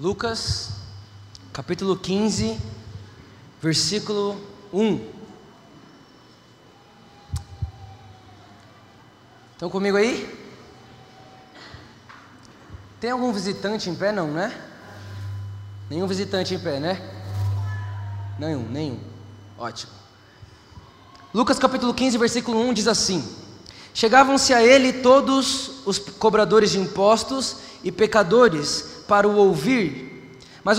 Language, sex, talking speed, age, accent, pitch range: Portuguese, male, 85 wpm, 20-39, Brazilian, 145-235 Hz